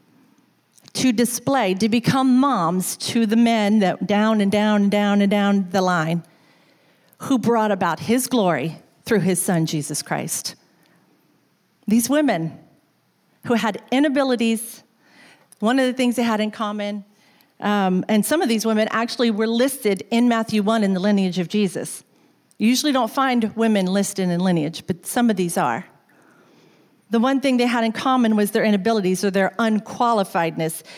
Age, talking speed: 40-59, 165 wpm